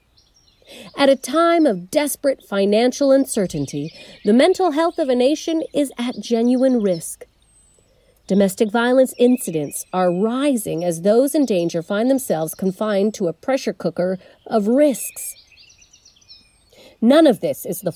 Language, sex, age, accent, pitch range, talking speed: English, female, 40-59, American, 180-255 Hz, 135 wpm